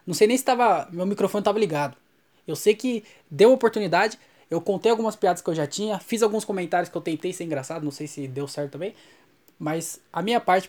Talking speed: 230 wpm